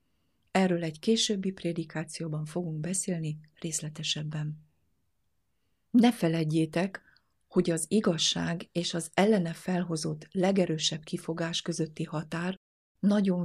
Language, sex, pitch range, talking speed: Hungarian, female, 160-190 Hz, 95 wpm